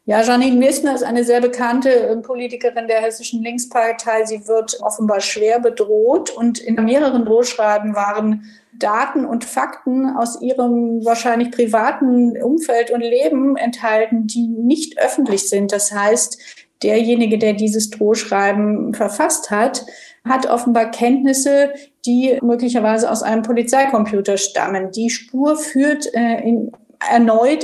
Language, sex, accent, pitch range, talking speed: German, female, German, 215-245 Hz, 130 wpm